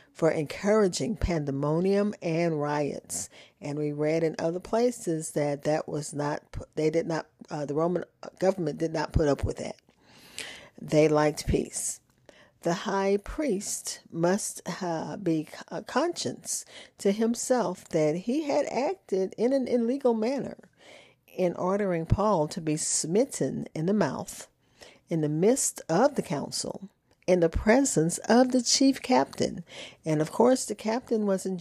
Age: 40-59